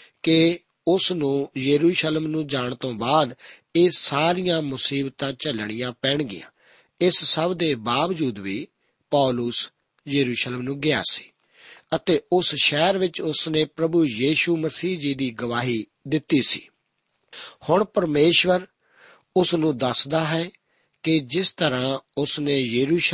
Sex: male